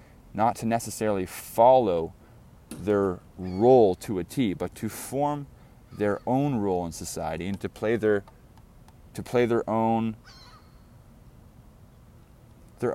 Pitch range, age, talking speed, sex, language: 90-115 Hz, 20-39, 120 wpm, male, English